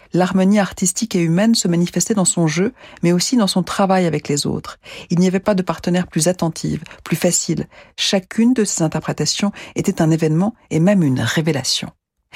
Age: 40-59